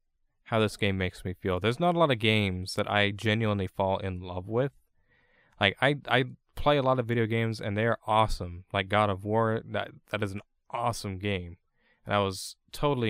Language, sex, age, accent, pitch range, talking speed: English, male, 20-39, American, 100-140 Hz, 210 wpm